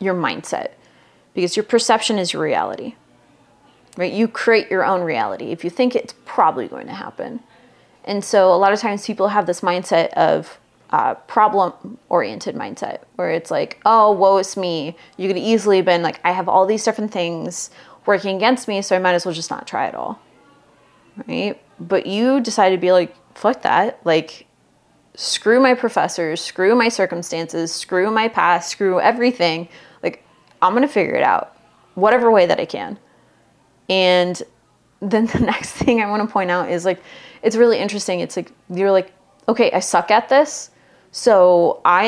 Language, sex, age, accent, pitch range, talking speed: English, female, 30-49, American, 180-225 Hz, 185 wpm